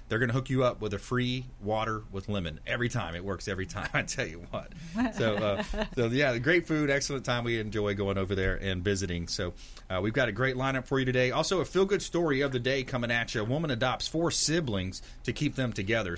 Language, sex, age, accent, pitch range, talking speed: English, male, 30-49, American, 100-135 Hz, 250 wpm